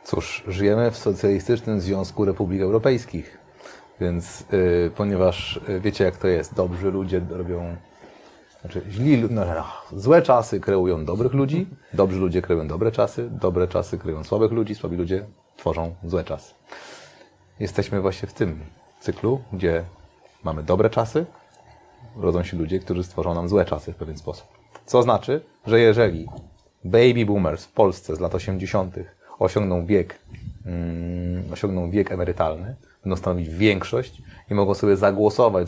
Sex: male